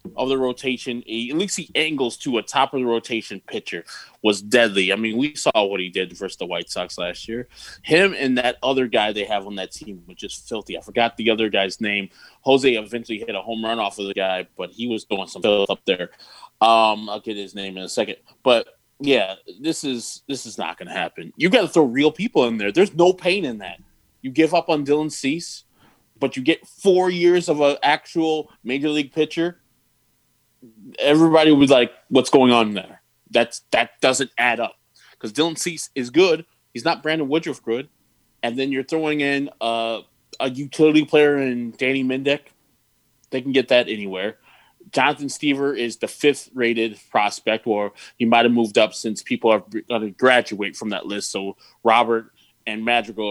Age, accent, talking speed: 20-39, American, 195 wpm